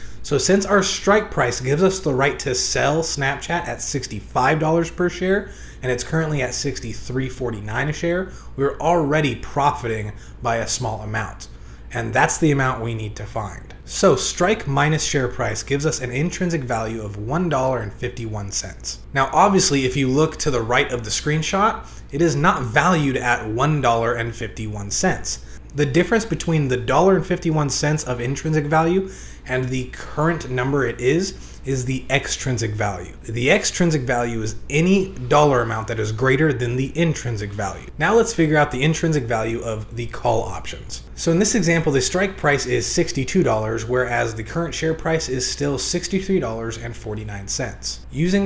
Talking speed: 170 wpm